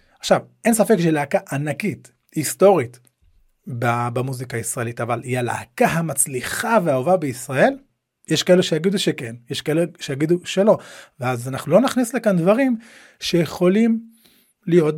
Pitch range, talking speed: 145-195 Hz, 120 wpm